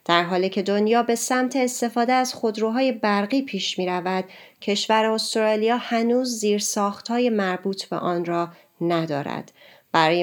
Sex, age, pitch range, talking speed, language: female, 30-49, 175-220 Hz, 135 wpm, Persian